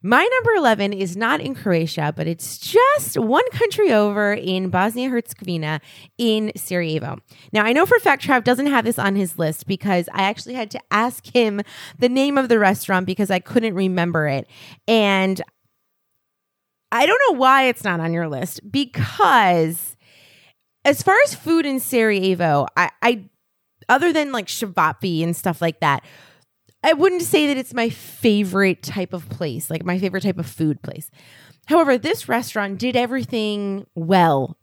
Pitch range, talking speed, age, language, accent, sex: 170-240 Hz, 170 wpm, 20-39, English, American, female